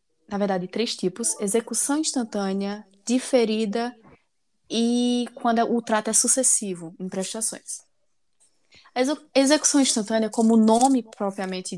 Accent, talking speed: Brazilian, 105 wpm